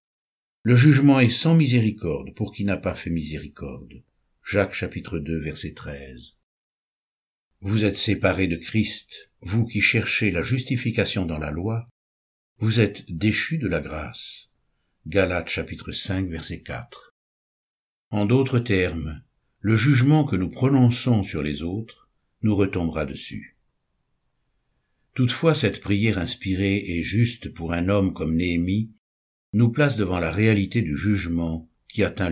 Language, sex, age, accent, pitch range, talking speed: French, male, 60-79, French, 85-125 Hz, 135 wpm